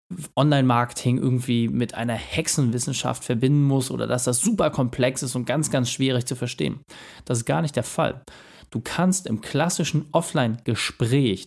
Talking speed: 155 wpm